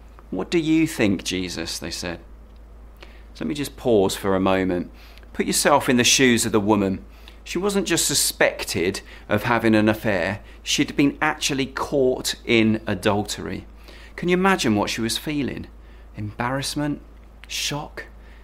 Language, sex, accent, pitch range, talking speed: English, male, British, 85-125 Hz, 145 wpm